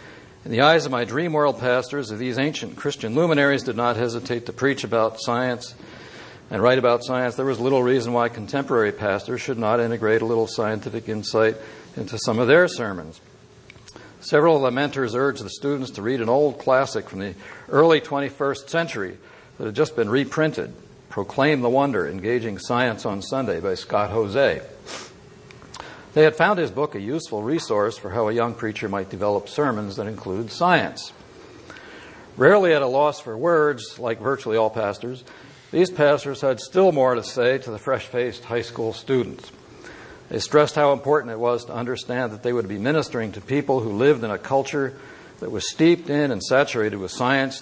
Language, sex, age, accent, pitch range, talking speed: English, male, 60-79, American, 115-140 Hz, 185 wpm